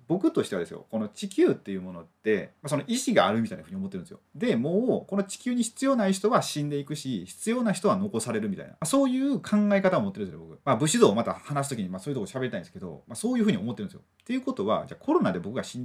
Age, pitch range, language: 30-49, 150-215 Hz, Japanese